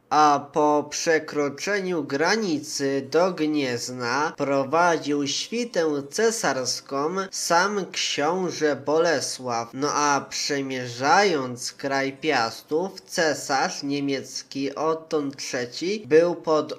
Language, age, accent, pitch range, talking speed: Polish, 20-39, native, 135-170 Hz, 80 wpm